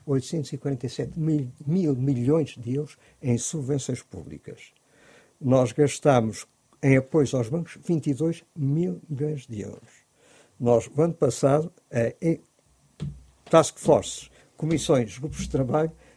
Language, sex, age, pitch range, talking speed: Portuguese, male, 50-69, 125-160 Hz, 115 wpm